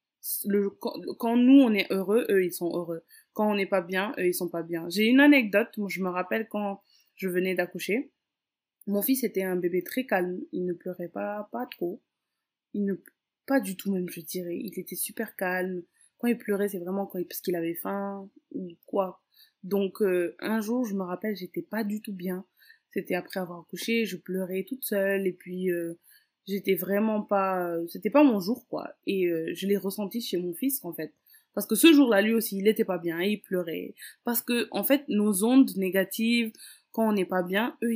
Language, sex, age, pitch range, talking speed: French, female, 20-39, 180-220 Hz, 215 wpm